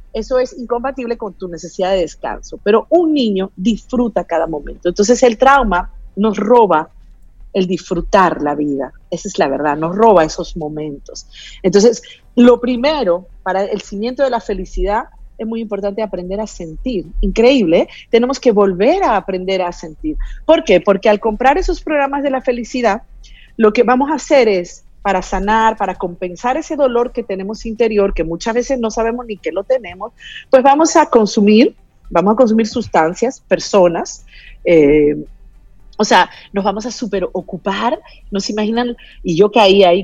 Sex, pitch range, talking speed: female, 185-240 Hz, 170 wpm